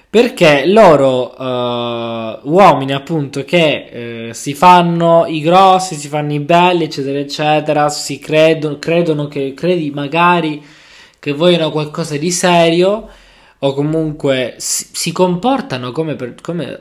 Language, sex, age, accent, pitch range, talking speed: Italian, male, 20-39, native, 115-160 Hz, 130 wpm